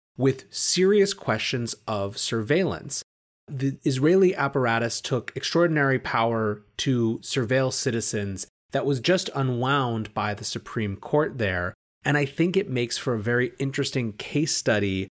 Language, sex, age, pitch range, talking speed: English, male, 30-49, 110-135 Hz, 135 wpm